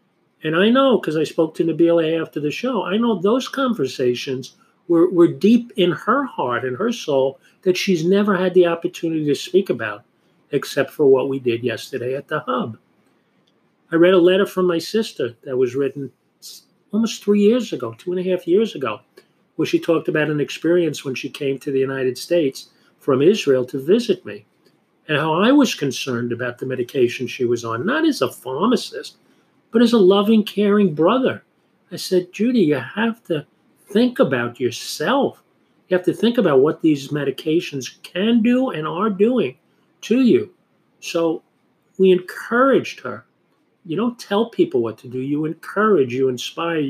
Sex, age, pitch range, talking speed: male, 40-59, 145-210 Hz, 180 wpm